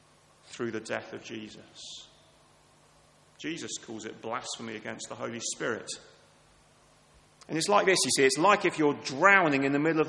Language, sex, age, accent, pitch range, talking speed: English, male, 30-49, British, 150-205 Hz, 165 wpm